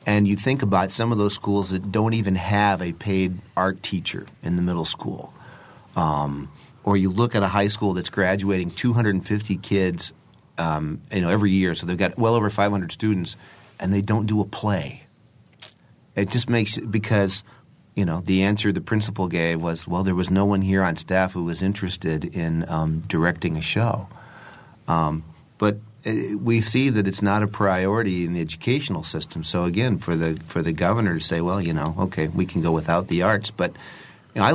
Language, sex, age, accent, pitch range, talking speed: English, male, 40-59, American, 90-110 Hz, 200 wpm